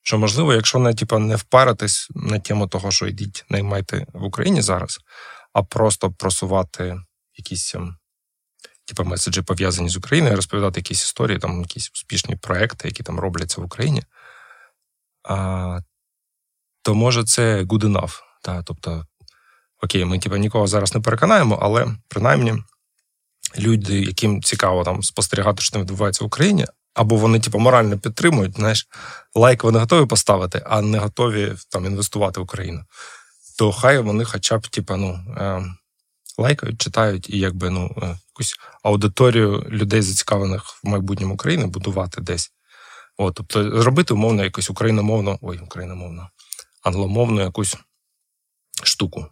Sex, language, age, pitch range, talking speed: male, Ukrainian, 20-39, 95-110 Hz, 135 wpm